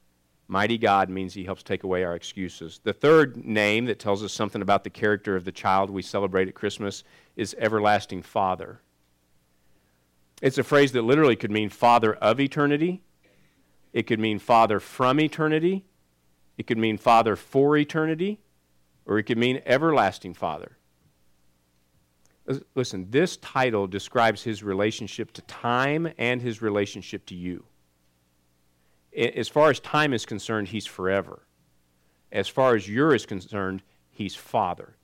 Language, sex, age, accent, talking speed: English, male, 50-69, American, 145 wpm